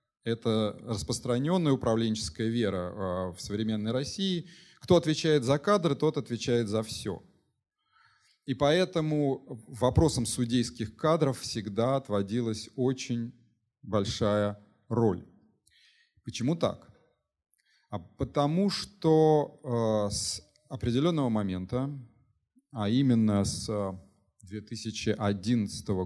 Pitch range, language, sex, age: 110-145 Hz, Russian, male, 30-49